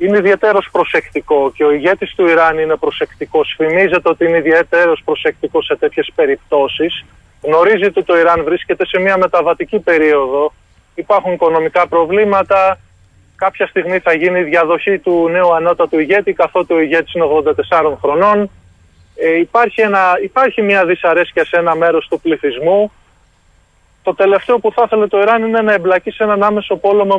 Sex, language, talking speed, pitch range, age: male, Greek, 150 wpm, 160-220 Hz, 20-39